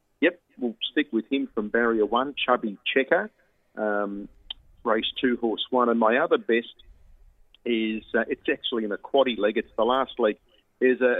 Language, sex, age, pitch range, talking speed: English, male, 40-59, 110-130 Hz, 170 wpm